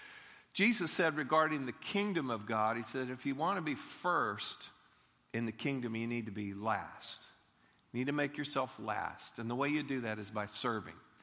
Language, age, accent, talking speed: English, 50-69, American, 205 wpm